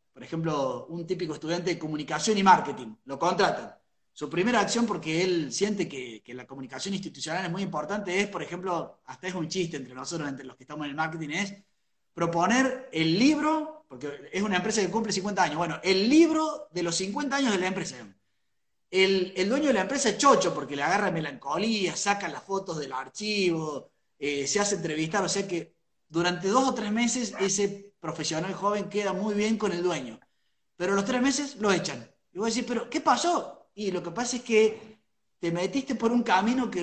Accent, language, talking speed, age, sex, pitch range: Argentinian, Spanish, 205 wpm, 30-49, male, 160-220 Hz